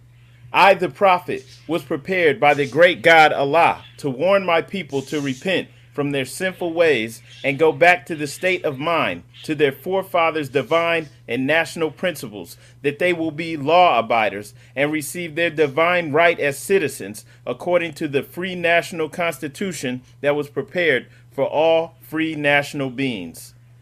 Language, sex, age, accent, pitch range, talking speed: English, male, 30-49, American, 135-175 Hz, 155 wpm